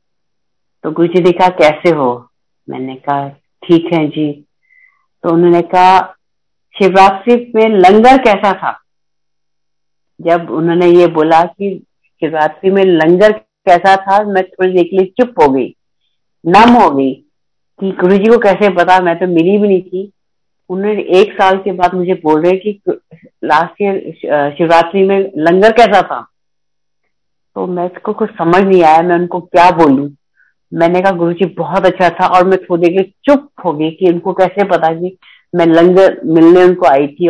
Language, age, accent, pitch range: Hindi, 50-69, native, 160-195 Hz